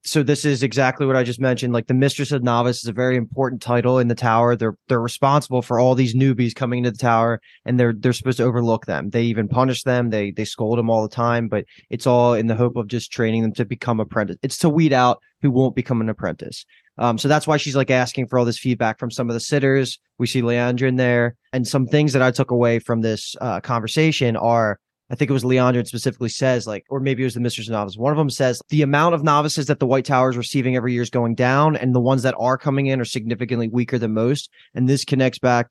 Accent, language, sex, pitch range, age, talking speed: American, English, male, 120-135 Hz, 20-39, 260 wpm